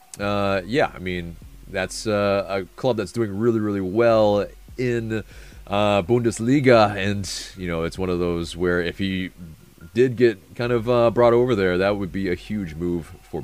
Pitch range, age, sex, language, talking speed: 90-110 Hz, 30-49, male, English, 185 wpm